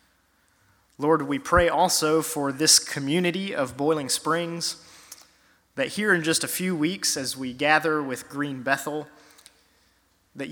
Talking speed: 135 wpm